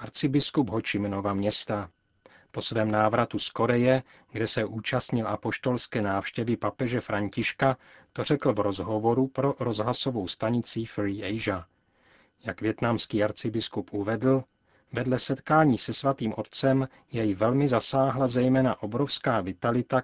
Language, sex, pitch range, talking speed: Czech, male, 105-130 Hz, 120 wpm